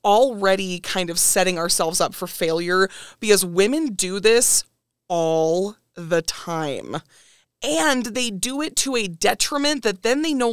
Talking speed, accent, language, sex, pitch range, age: 150 wpm, American, English, female, 195-275 Hz, 20-39